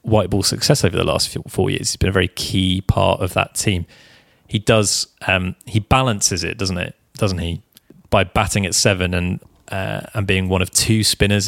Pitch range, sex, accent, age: 95-120 Hz, male, British, 20-39